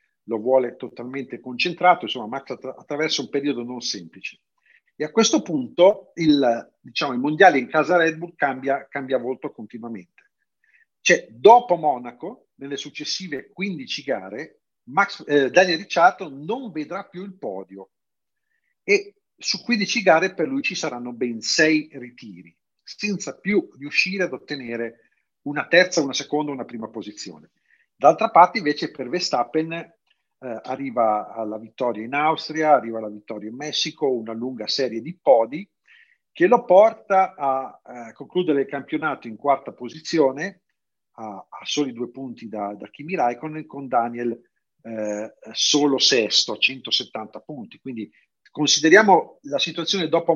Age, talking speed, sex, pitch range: 50-69, 140 wpm, male, 120-180 Hz